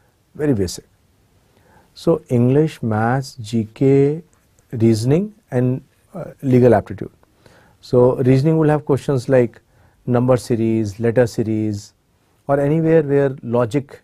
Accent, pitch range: Indian, 115-150 Hz